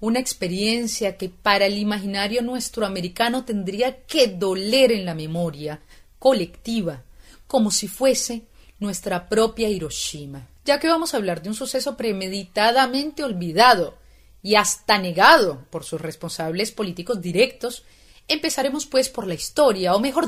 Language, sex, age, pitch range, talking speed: Spanish, female, 30-49, 175-245 Hz, 135 wpm